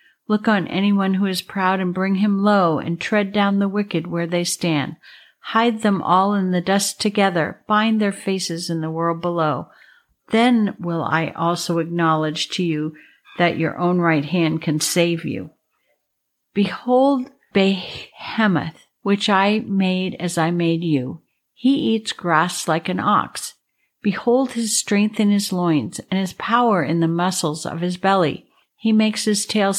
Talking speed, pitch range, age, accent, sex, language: 165 wpm, 170-210 Hz, 60-79, American, female, English